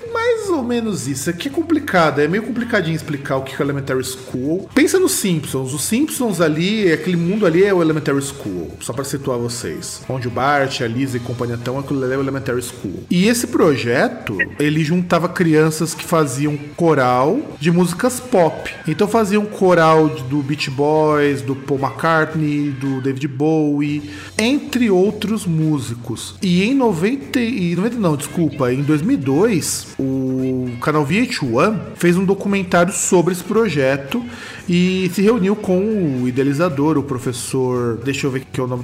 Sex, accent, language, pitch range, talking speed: male, Brazilian, Portuguese, 140-195 Hz, 165 wpm